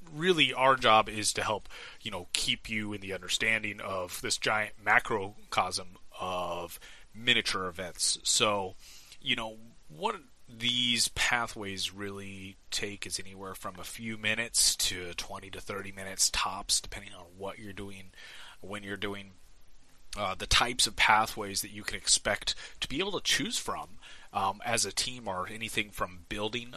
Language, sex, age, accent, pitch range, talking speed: English, male, 30-49, American, 95-110 Hz, 160 wpm